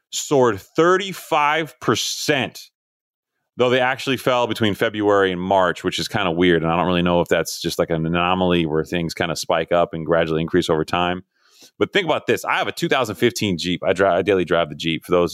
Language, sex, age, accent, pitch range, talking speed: English, male, 30-49, American, 85-115 Hz, 215 wpm